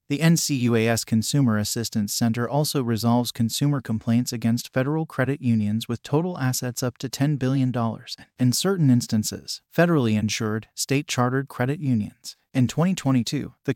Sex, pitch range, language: male, 115-140 Hz, English